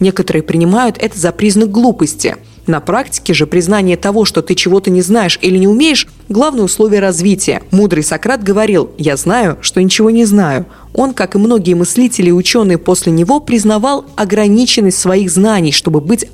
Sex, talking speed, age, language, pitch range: female, 170 wpm, 20-39, Russian, 175-220 Hz